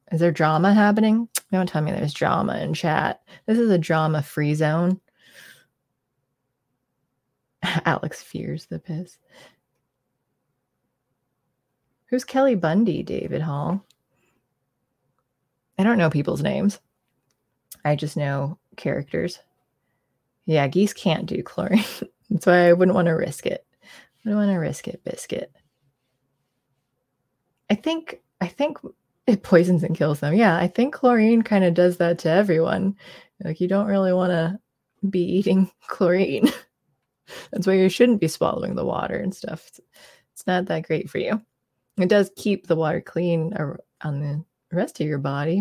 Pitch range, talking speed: 150-195 Hz, 150 wpm